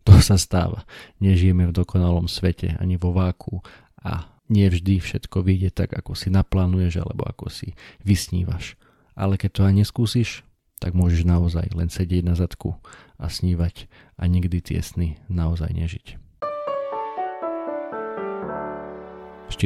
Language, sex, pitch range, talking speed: Slovak, male, 90-110 Hz, 130 wpm